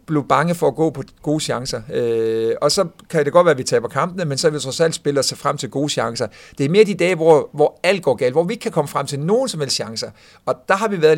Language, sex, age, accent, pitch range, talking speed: Danish, male, 50-69, native, 125-155 Hz, 310 wpm